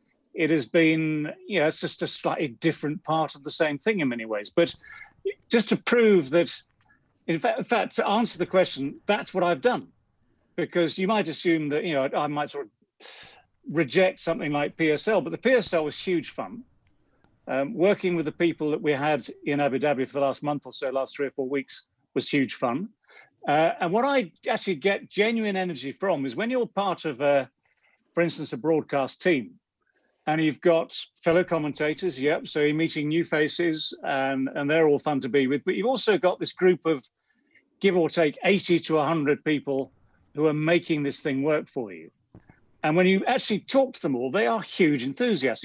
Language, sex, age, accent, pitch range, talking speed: English, male, 40-59, British, 145-185 Hz, 200 wpm